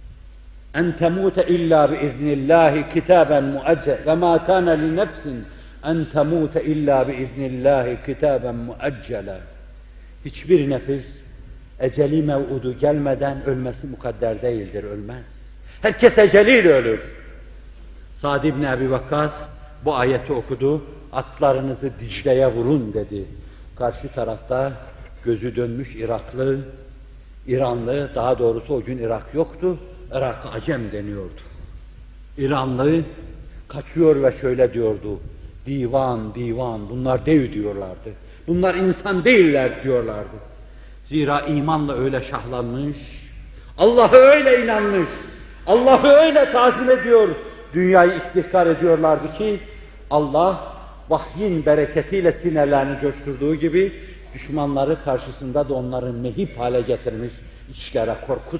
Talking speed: 100 wpm